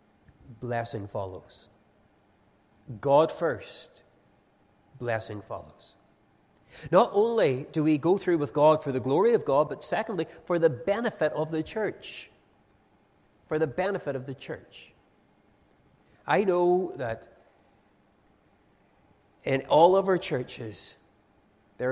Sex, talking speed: male, 115 wpm